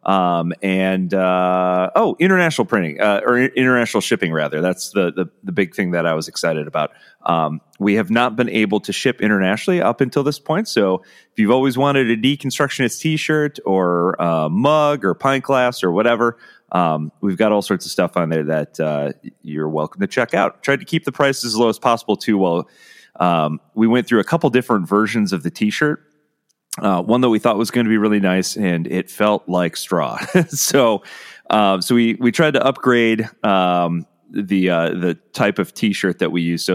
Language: English